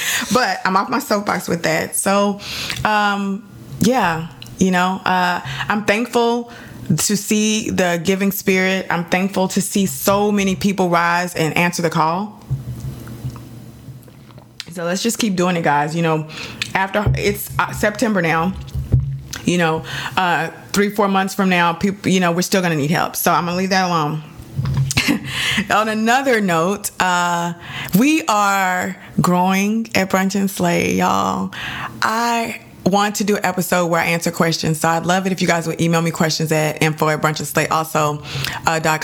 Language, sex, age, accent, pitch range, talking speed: English, female, 20-39, American, 165-200 Hz, 165 wpm